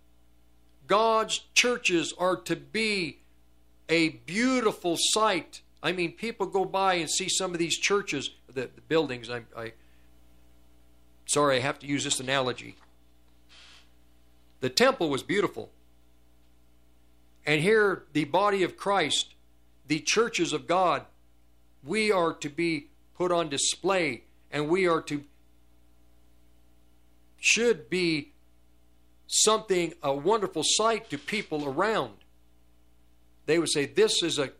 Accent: American